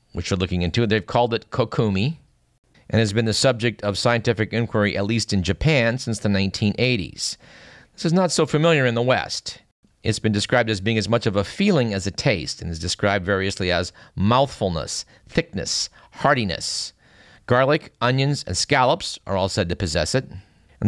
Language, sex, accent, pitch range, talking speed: English, male, American, 95-120 Hz, 180 wpm